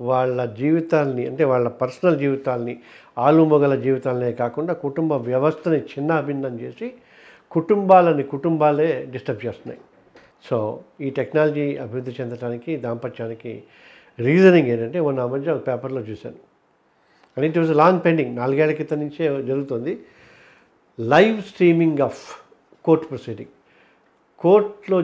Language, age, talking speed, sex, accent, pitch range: Telugu, 50-69, 110 wpm, male, native, 120-155 Hz